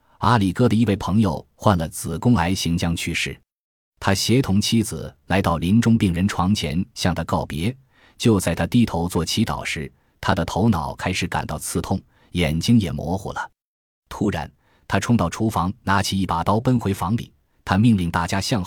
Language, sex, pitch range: Chinese, male, 85-110 Hz